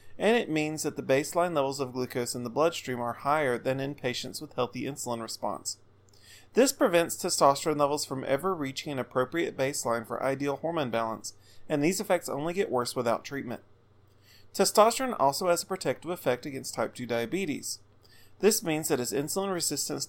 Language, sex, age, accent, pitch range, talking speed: English, male, 30-49, American, 115-160 Hz, 175 wpm